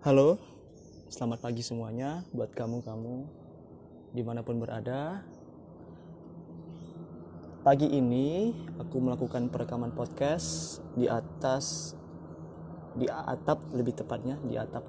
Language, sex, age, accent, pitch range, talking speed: Indonesian, male, 20-39, native, 105-130 Hz, 90 wpm